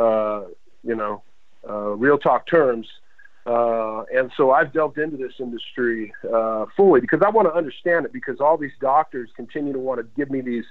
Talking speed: 190 wpm